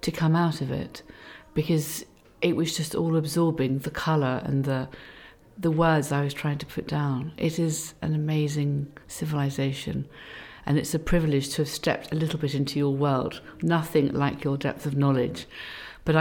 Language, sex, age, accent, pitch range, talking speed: English, female, 50-69, British, 145-180 Hz, 180 wpm